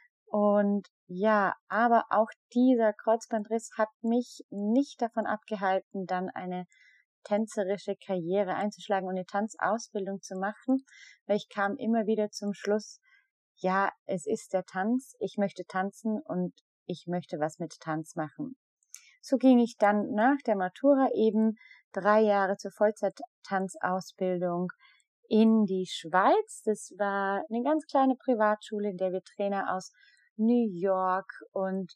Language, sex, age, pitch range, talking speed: German, female, 30-49, 185-220 Hz, 135 wpm